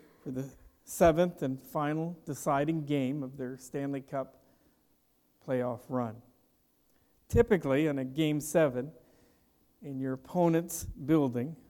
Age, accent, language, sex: 50-69, American, English, male